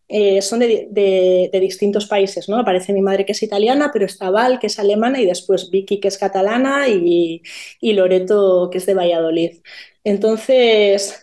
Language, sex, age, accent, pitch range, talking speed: Spanish, female, 20-39, Spanish, 185-215 Hz, 180 wpm